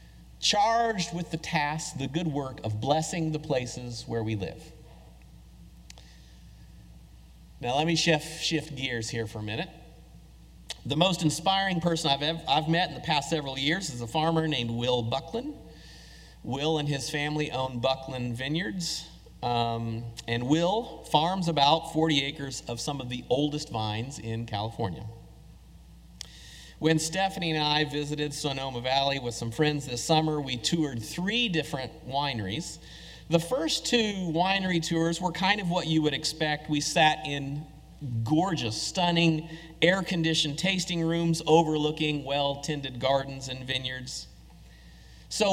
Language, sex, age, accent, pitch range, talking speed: English, male, 40-59, American, 120-165 Hz, 140 wpm